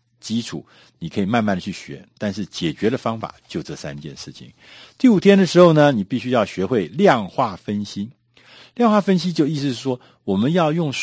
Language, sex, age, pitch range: Chinese, male, 50-69, 115-170 Hz